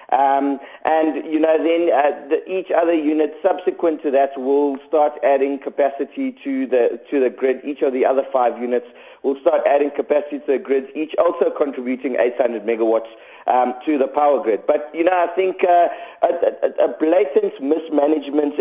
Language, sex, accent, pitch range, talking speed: English, male, South African, 135-165 Hz, 185 wpm